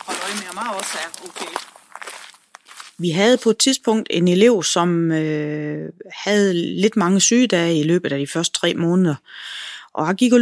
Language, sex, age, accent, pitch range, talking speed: Danish, female, 30-49, native, 155-200 Hz, 140 wpm